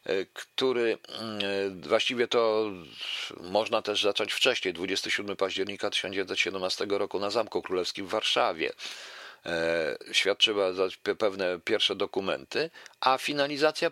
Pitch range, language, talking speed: 95-130 Hz, Polish, 95 wpm